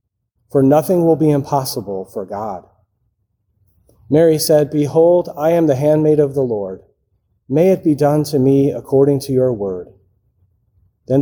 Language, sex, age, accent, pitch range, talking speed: English, male, 40-59, American, 105-140 Hz, 150 wpm